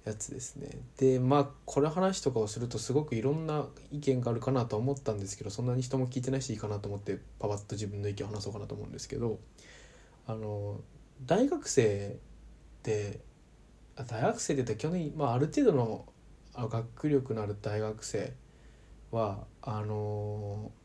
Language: Japanese